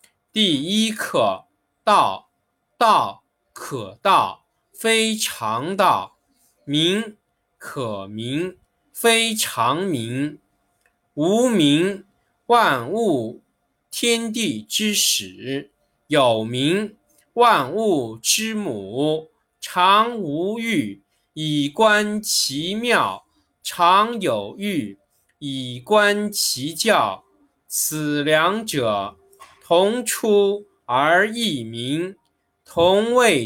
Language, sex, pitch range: Chinese, male, 135-225 Hz